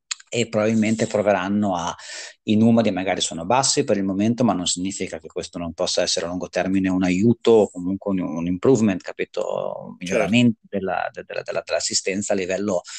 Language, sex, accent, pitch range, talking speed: Italian, male, native, 95-115 Hz, 180 wpm